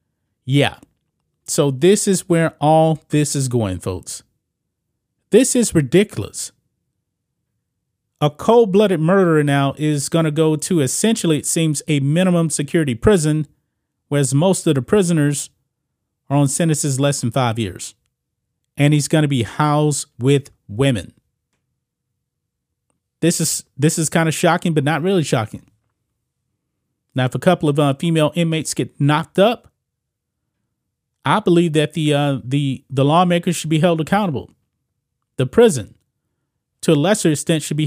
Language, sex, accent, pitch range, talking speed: English, male, American, 135-170 Hz, 145 wpm